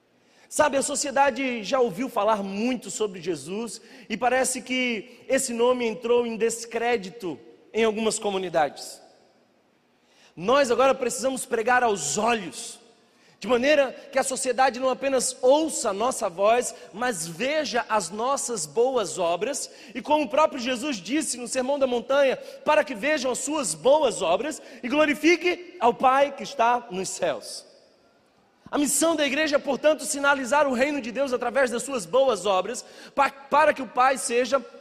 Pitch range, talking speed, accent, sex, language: 220-265 Hz, 155 wpm, Brazilian, male, Portuguese